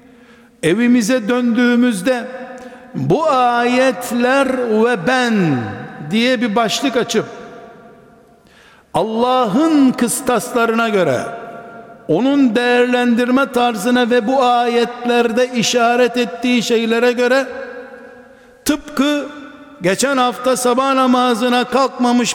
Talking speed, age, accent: 80 wpm, 60-79, native